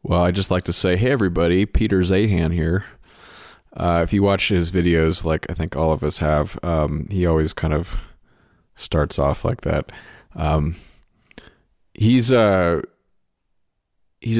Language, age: English, 30-49